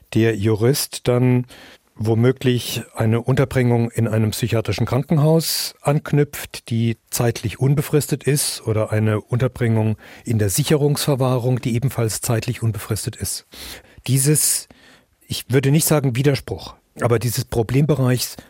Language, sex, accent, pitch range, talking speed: German, male, German, 115-135 Hz, 115 wpm